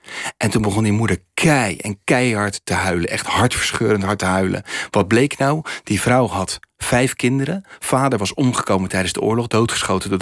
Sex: male